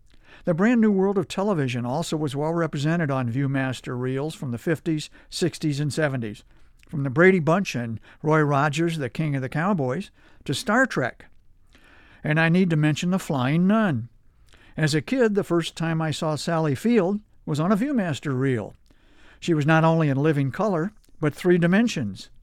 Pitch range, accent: 140-185 Hz, American